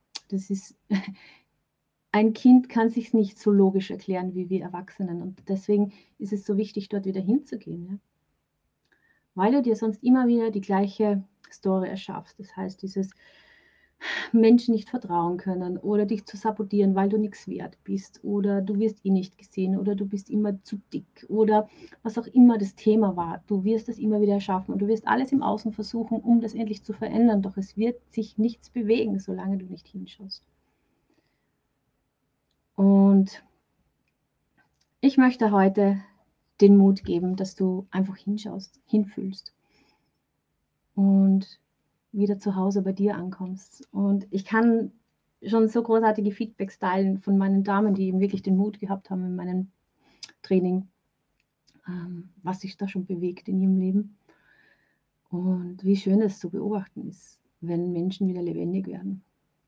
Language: German